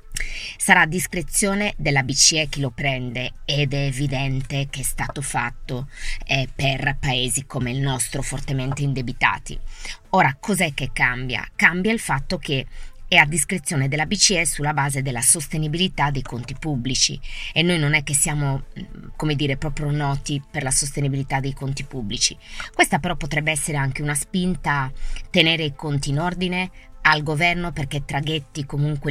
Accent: native